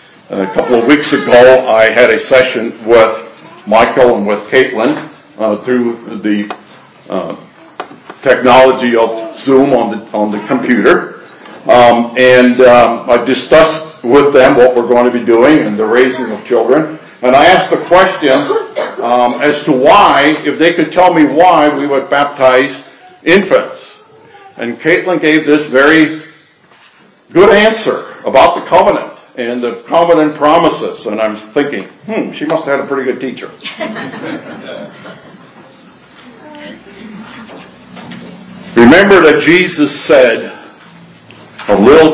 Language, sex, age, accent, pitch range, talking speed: English, male, 60-79, American, 120-160 Hz, 135 wpm